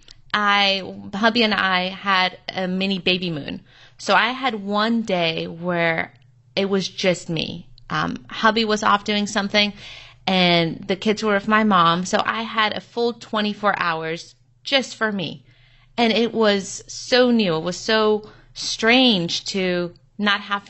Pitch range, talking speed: 185-225 Hz, 155 wpm